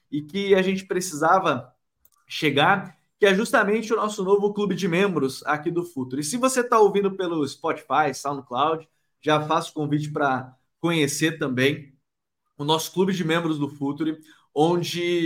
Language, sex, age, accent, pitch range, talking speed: Portuguese, male, 20-39, Brazilian, 145-180 Hz, 155 wpm